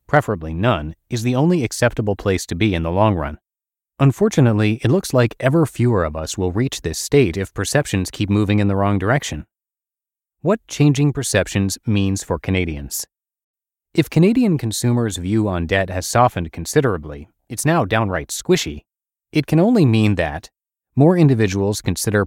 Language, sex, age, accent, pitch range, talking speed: English, male, 30-49, American, 95-130 Hz, 160 wpm